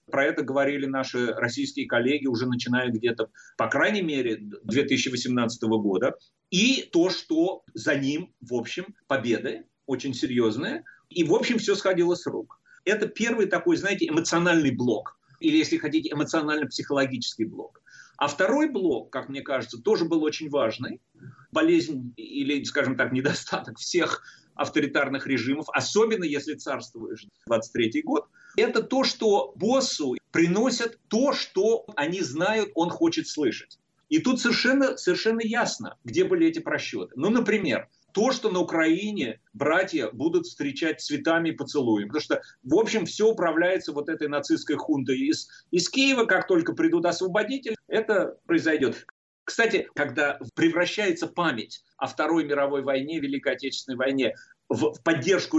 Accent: native